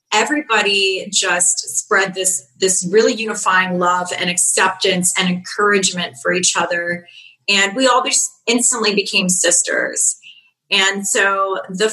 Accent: American